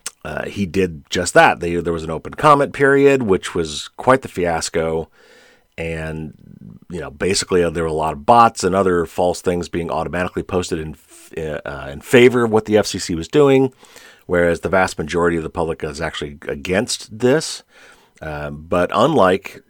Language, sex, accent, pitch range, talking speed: English, male, American, 75-95 Hz, 185 wpm